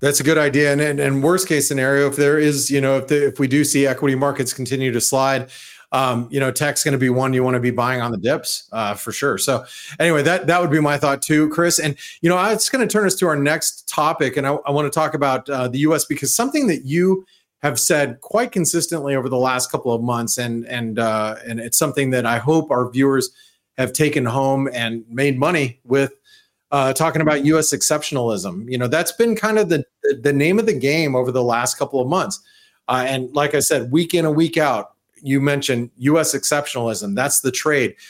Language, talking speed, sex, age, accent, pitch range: English, 235 wpm, male, 30-49, American, 130-160 Hz